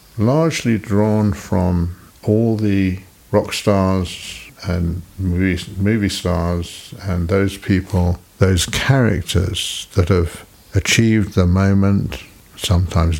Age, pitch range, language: 60-79, 90-105 Hz, English